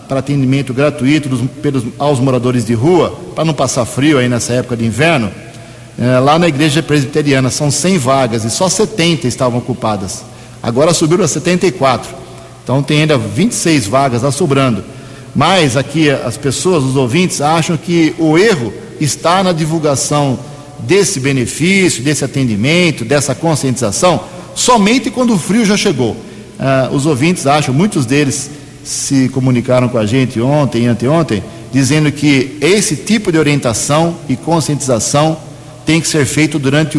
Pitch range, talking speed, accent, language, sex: 125-160 Hz, 145 wpm, Brazilian, Portuguese, male